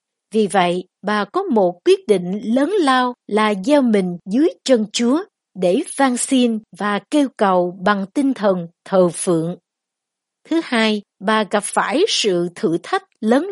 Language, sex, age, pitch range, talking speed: Vietnamese, female, 60-79, 195-280 Hz, 155 wpm